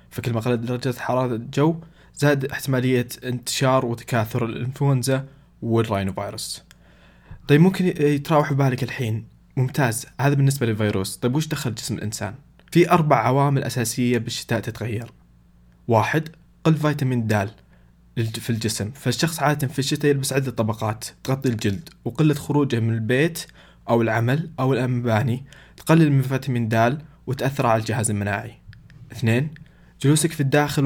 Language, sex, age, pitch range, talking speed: Arabic, male, 20-39, 110-140 Hz, 130 wpm